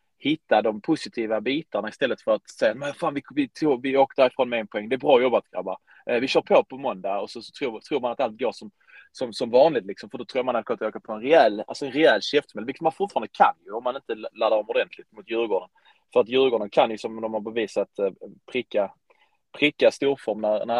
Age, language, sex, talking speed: 20-39, Swedish, male, 250 wpm